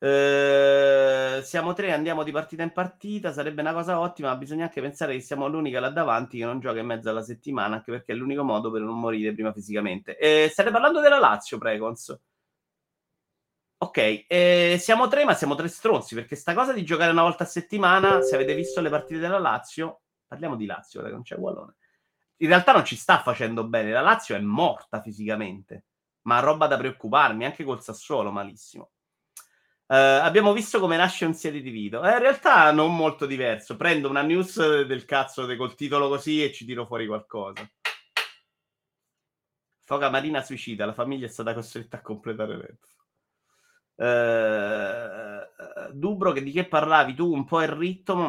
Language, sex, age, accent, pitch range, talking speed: Italian, male, 30-49, native, 115-170 Hz, 180 wpm